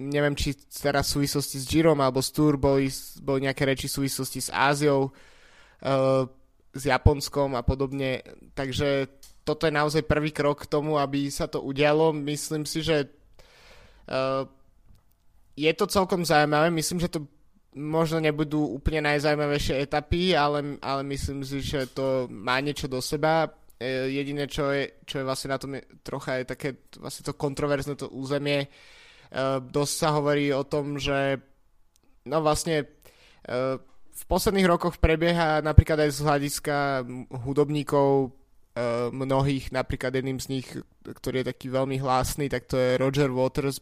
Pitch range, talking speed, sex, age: 135-150 Hz, 150 wpm, male, 20-39